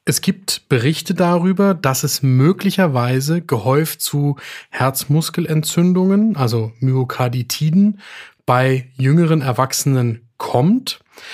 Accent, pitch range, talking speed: German, 130-165 Hz, 85 wpm